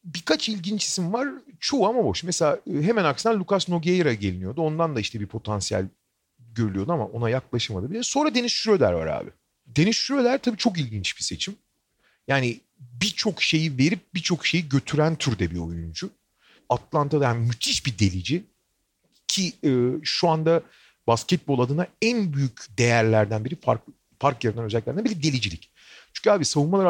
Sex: male